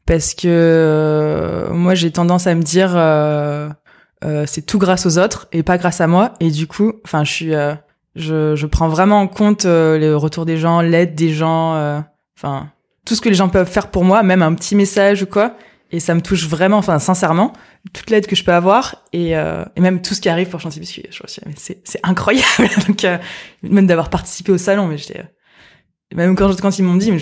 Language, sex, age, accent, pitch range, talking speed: French, female, 20-39, French, 160-200 Hz, 225 wpm